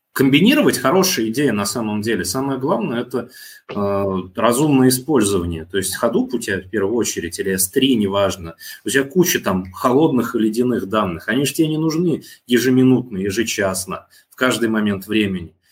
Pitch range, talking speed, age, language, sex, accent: 100-140 Hz, 155 wpm, 20-39, Russian, male, native